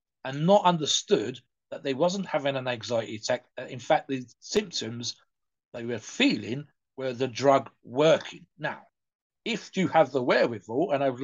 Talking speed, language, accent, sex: 160 wpm, English, British, male